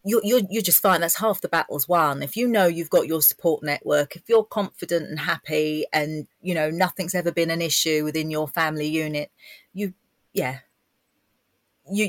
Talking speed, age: 190 wpm, 30-49